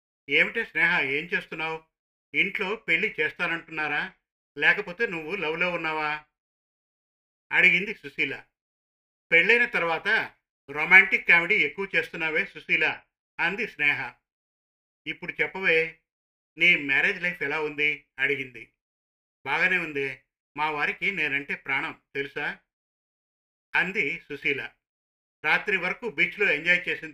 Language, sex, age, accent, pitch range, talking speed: Telugu, male, 50-69, native, 140-175 Hz, 95 wpm